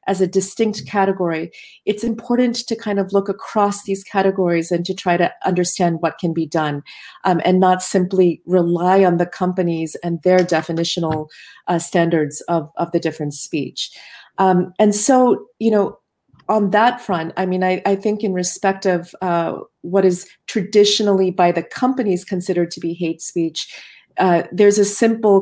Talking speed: 170 wpm